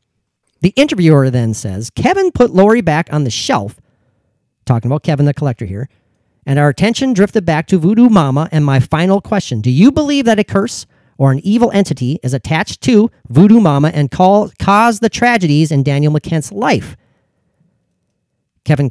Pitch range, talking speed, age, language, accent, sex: 130-190 Hz, 170 wpm, 40-59, English, American, male